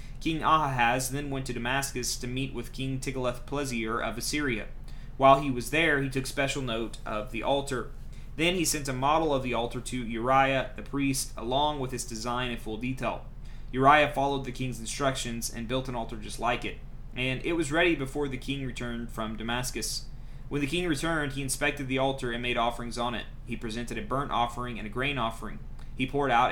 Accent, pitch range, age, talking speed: American, 120-140 Hz, 30-49, 205 wpm